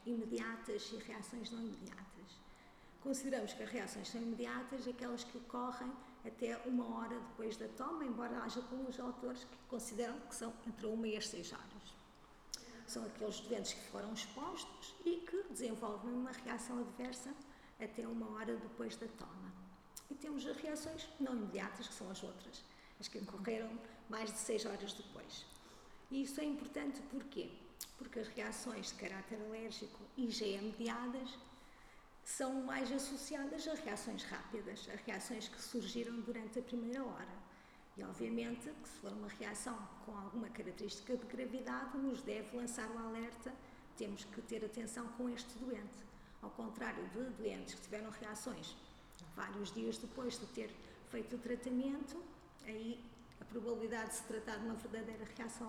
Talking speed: 160 wpm